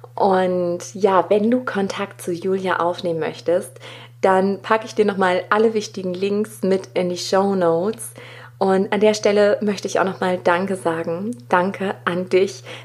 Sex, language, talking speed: female, German, 165 wpm